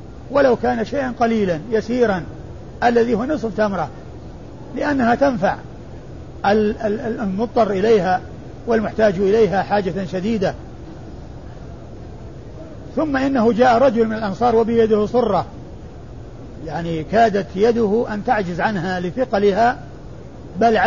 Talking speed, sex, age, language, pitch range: 95 wpm, male, 50-69, Arabic, 195-230 Hz